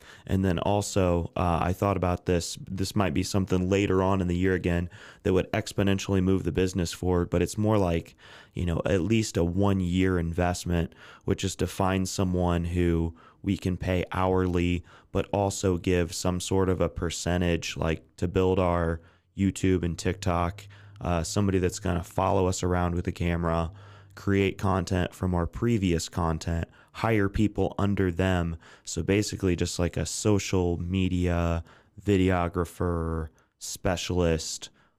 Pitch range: 85-100 Hz